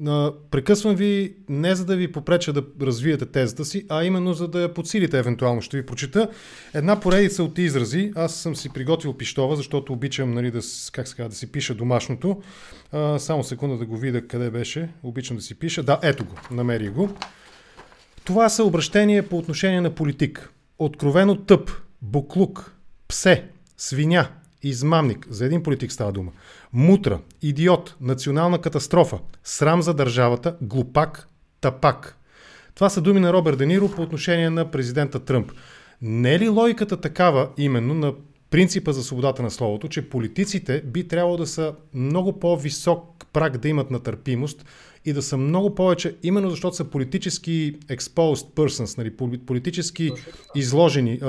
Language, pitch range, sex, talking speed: English, 130-175 Hz, male, 150 wpm